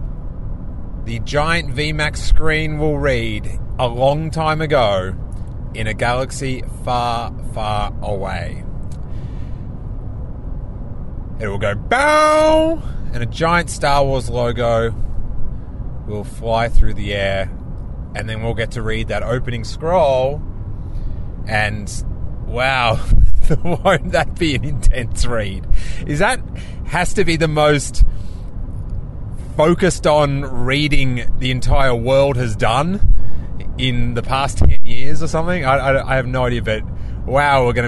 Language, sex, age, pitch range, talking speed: English, male, 30-49, 105-140 Hz, 125 wpm